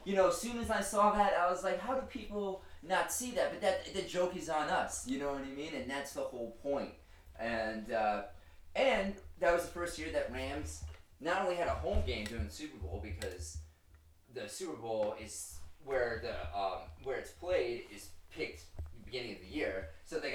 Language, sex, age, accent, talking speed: English, male, 30-49, American, 220 wpm